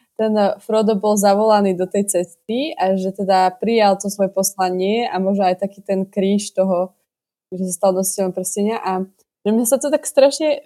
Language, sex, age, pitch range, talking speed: Slovak, female, 20-39, 185-210 Hz, 185 wpm